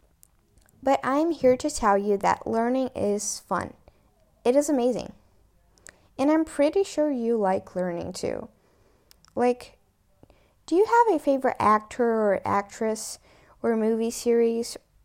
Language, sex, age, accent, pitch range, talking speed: English, female, 10-29, American, 200-265 Hz, 130 wpm